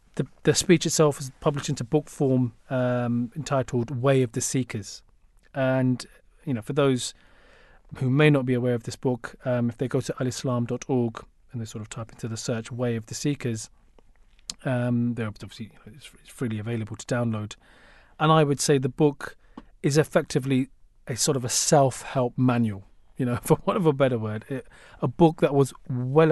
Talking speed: 200 wpm